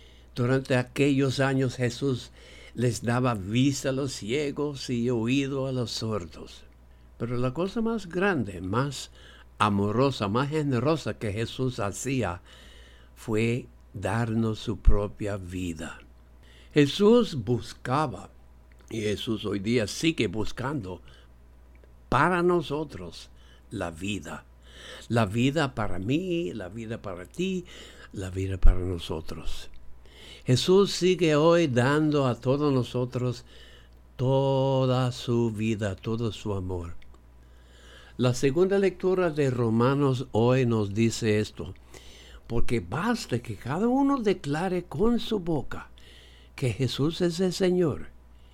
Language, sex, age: English, male, 60-79